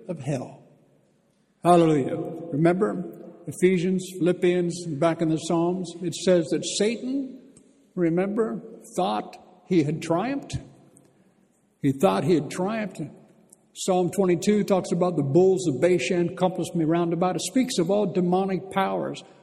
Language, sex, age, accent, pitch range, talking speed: English, male, 60-79, American, 150-180 Hz, 130 wpm